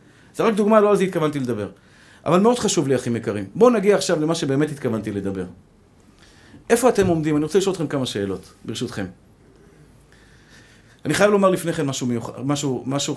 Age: 50-69